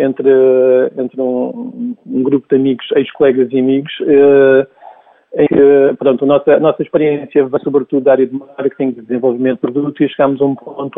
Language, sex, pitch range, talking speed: Portuguese, male, 130-150 Hz, 170 wpm